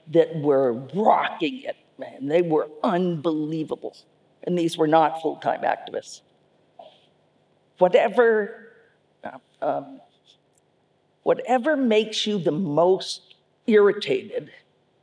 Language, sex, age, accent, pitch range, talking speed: English, female, 50-69, American, 150-200 Hz, 90 wpm